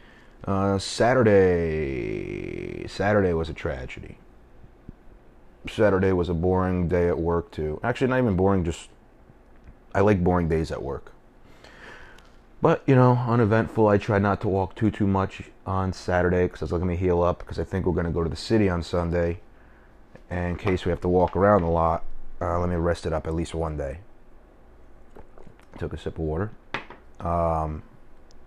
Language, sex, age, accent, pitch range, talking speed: English, male, 30-49, American, 80-95 Hz, 175 wpm